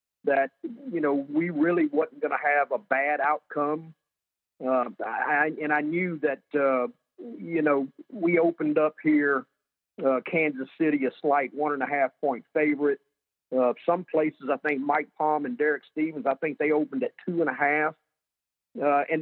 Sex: male